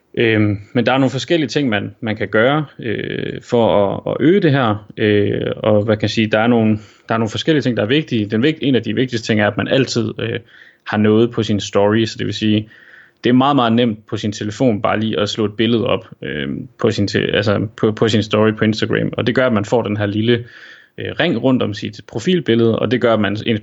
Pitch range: 105-120 Hz